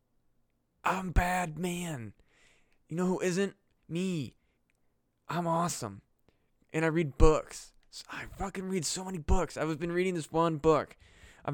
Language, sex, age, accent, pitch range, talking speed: English, male, 20-39, American, 115-155 Hz, 140 wpm